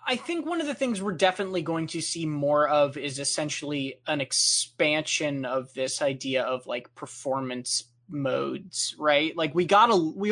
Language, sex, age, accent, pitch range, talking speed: English, male, 20-39, American, 140-180 Hz, 175 wpm